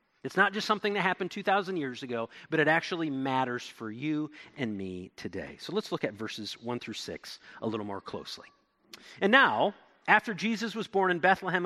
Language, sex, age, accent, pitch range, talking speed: English, male, 40-59, American, 150-210 Hz, 195 wpm